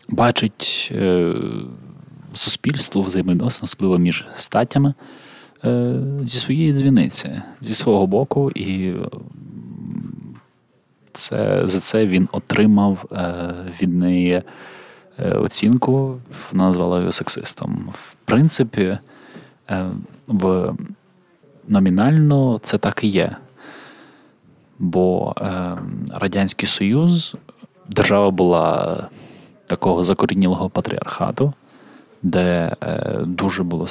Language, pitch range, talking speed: Ukrainian, 90-140 Hz, 90 wpm